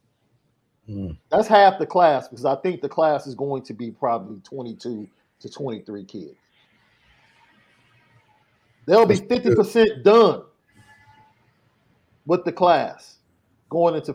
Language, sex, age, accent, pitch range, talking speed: English, male, 50-69, American, 120-160 Hz, 115 wpm